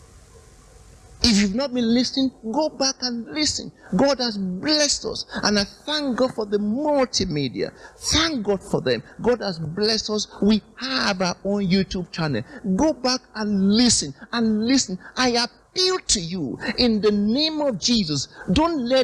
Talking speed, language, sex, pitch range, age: 160 wpm, English, male, 230-310 Hz, 50-69